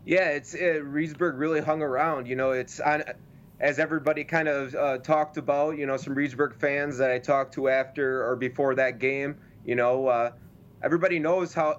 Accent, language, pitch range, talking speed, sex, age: American, English, 135-160 Hz, 185 wpm, male, 20-39